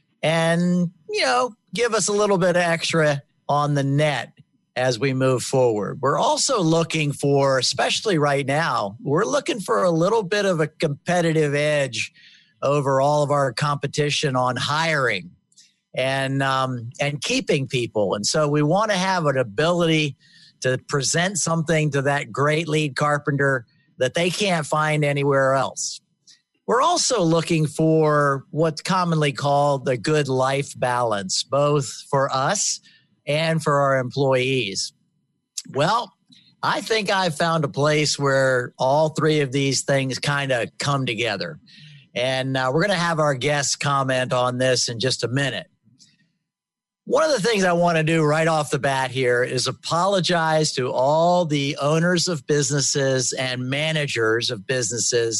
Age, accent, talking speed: 50-69, American, 155 wpm